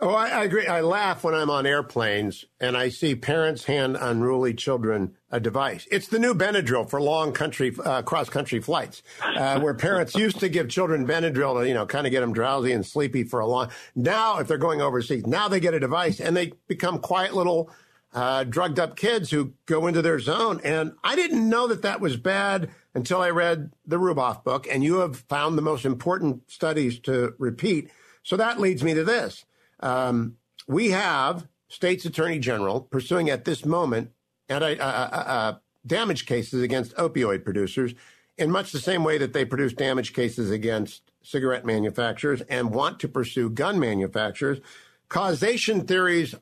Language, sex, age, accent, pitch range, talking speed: English, male, 50-69, American, 125-175 Hz, 185 wpm